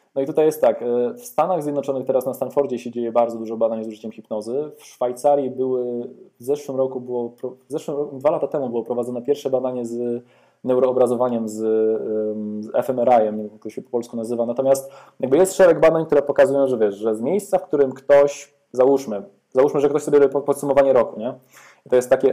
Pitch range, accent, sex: 125-150 Hz, native, male